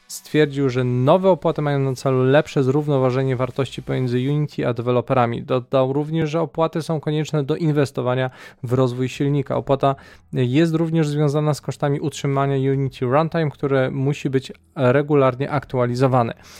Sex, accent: male, native